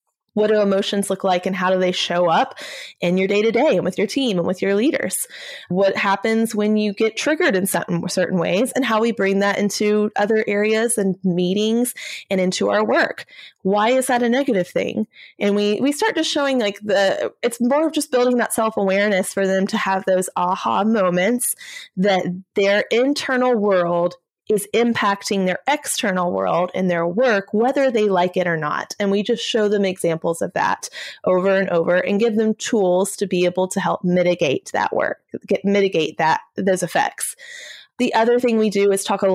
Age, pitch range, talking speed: 20-39, 185-225 Hz, 195 wpm